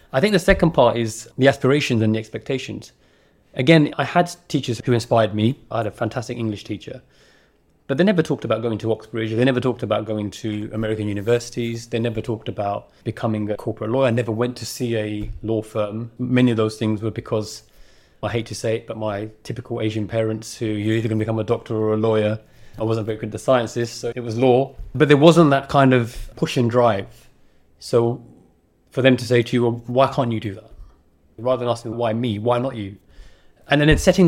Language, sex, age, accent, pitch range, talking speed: English, male, 30-49, British, 110-125 Hz, 225 wpm